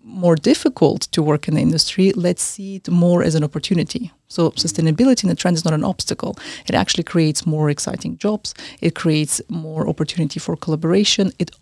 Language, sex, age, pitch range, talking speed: English, female, 30-49, 165-200 Hz, 185 wpm